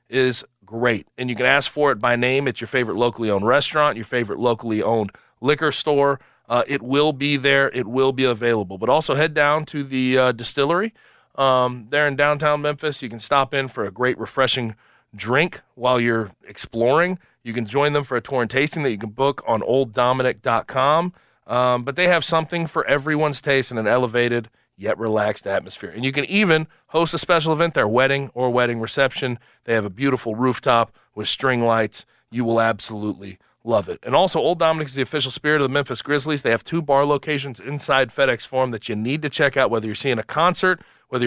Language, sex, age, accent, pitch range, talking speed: English, male, 30-49, American, 120-155 Hz, 205 wpm